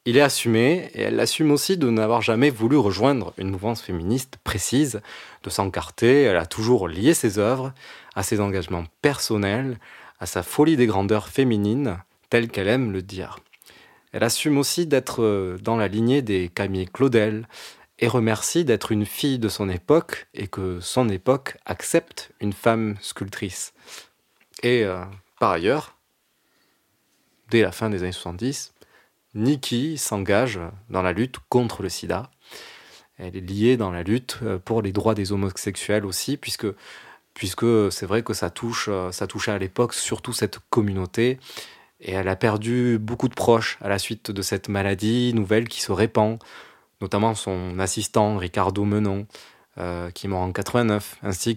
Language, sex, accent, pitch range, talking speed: French, male, French, 95-120 Hz, 160 wpm